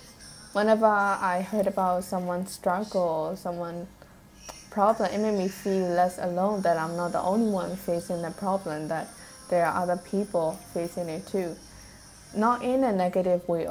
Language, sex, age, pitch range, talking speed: English, female, 10-29, 175-215 Hz, 160 wpm